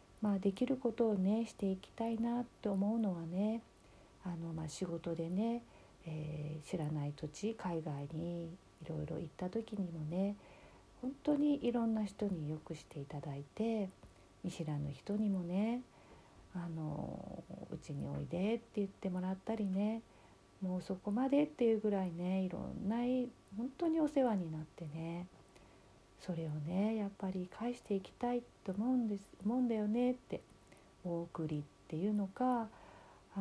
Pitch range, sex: 165-235 Hz, female